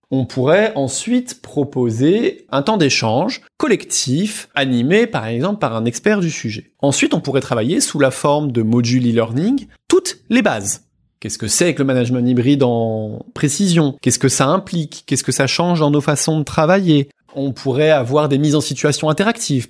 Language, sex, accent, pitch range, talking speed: French, male, French, 125-200 Hz, 180 wpm